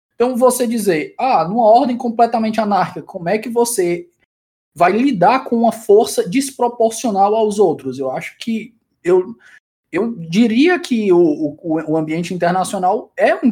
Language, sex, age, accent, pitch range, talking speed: Portuguese, male, 20-39, Brazilian, 175-235 Hz, 150 wpm